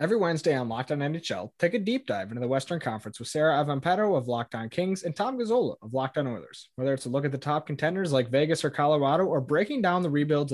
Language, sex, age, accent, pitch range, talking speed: English, male, 20-39, American, 130-160 Hz, 240 wpm